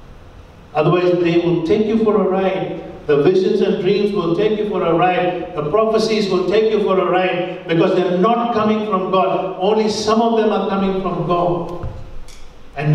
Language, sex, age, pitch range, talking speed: English, male, 50-69, 135-185 Hz, 190 wpm